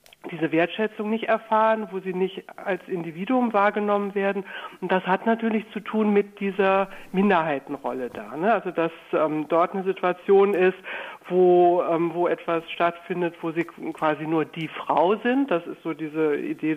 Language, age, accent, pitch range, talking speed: German, 60-79, German, 165-195 Hz, 165 wpm